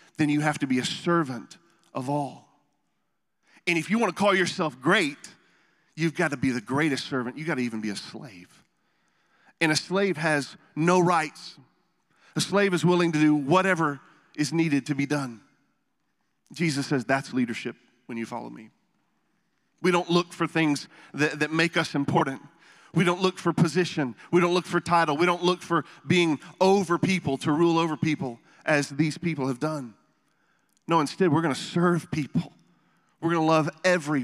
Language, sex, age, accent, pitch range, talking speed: English, male, 40-59, American, 130-170 Hz, 180 wpm